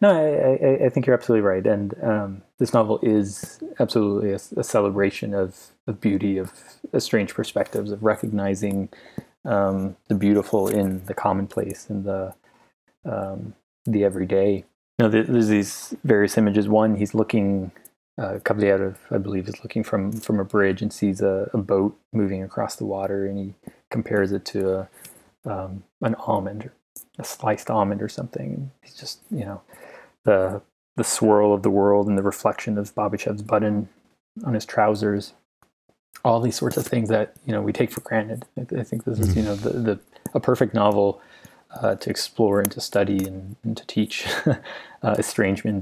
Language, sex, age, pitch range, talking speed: English, male, 30-49, 100-110 Hz, 180 wpm